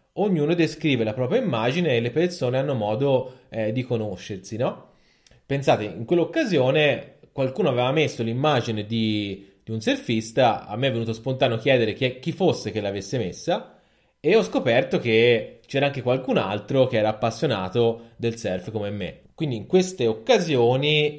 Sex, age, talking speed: male, 30-49, 155 wpm